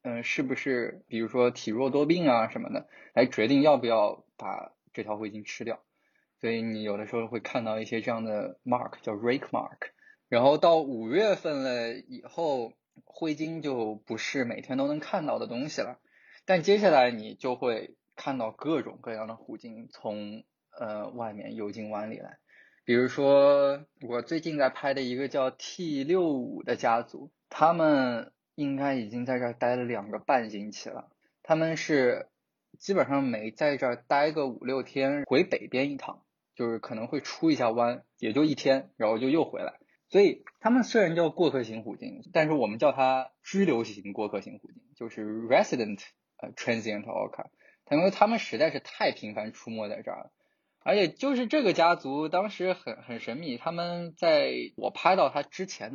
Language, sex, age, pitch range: Chinese, male, 20-39, 115-170 Hz